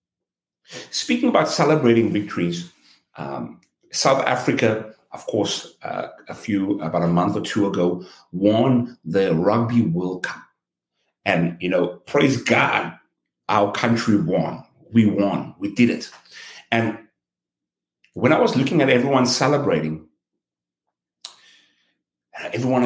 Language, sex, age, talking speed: English, male, 60-79, 120 wpm